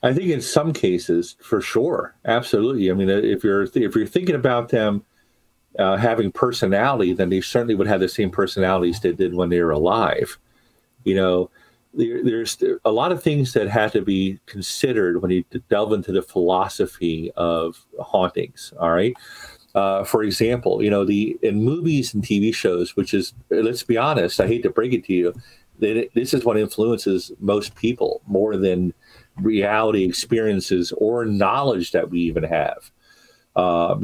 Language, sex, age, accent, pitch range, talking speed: English, male, 50-69, American, 90-115 Hz, 175 wpm